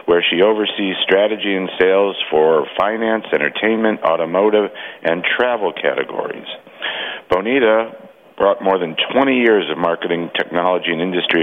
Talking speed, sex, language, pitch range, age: 125 wpm, male, English, 90-105 Hz, 50-69